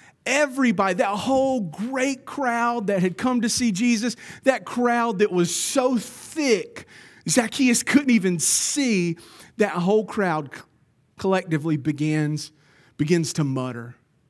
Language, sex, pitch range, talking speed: English, male, 145-210 Hz, 120 wpm